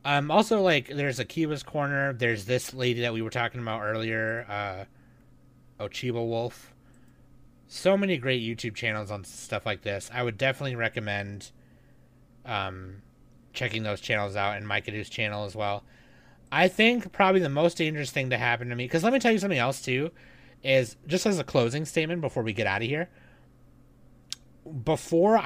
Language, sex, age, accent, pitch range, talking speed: English, male, 30-49, American, 115-140 Hz, 175 wpm